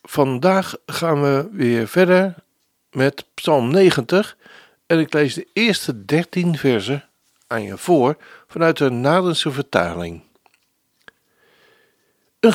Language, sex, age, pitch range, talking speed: Dutch, male, 60-79, 140-195 Hz, 110 wpm